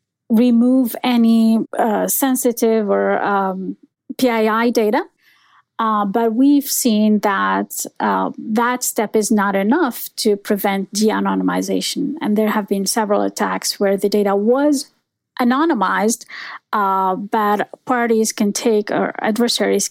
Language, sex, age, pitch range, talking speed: English, female, 30-49, 205-255 Hz, 120 wpm